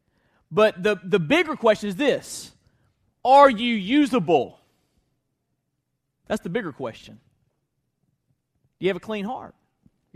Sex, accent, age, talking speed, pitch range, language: male, American, 30-49, 125 wpm, 165-205 Hz, English